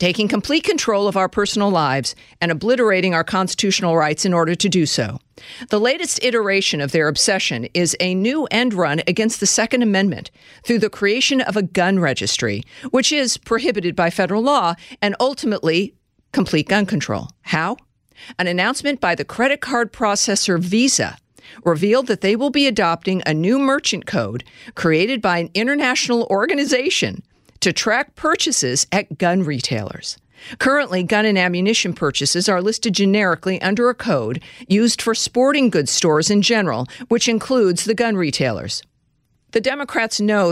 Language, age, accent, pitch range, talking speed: English, 50-69, American, 175-235 Hz, 155 wpm